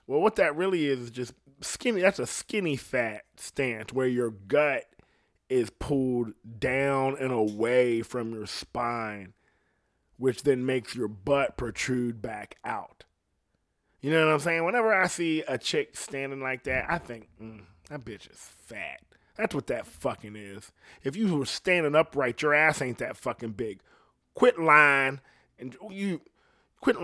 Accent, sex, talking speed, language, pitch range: American, male, 155 wpm, English, 110-150 Hz